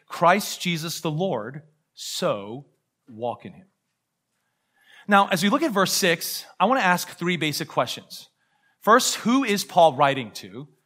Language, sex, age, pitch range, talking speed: English, male, 30-49, 140-185 Hz, 155 wpm